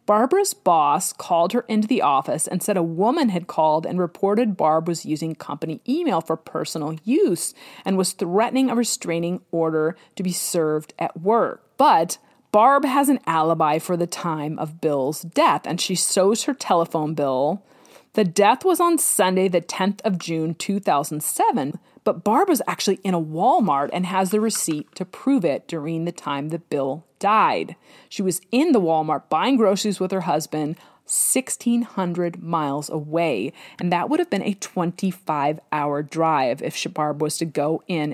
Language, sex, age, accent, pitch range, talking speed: English, female, 30-49, American, 160-210 Hz, 170 wpm